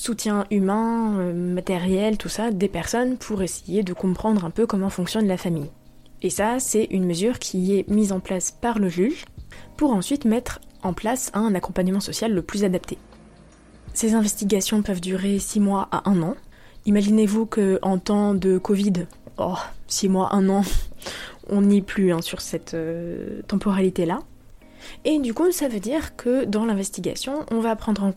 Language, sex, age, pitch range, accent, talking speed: French, female, 20-39, 185-220 Hz, French, 175 wpm